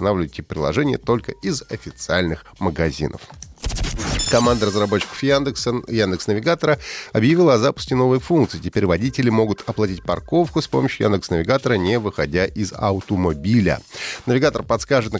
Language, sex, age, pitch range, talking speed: Russian, male, 30-49, 95-130 Hz, 115 wpm